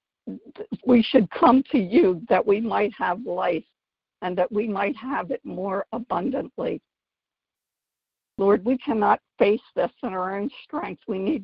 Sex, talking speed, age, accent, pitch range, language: female, 150 wpm, 60-79, American, 185-240 Hz, English